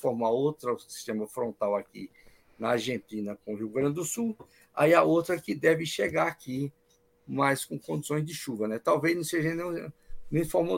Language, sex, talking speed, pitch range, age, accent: Portuguese, male, 180 wpm, 110-145 Hz, 50-69, Brazilian